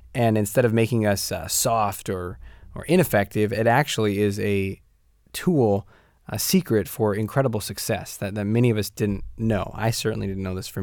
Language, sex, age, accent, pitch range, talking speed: English, male, 20-39, American, 100-120 Hz, 185 wpm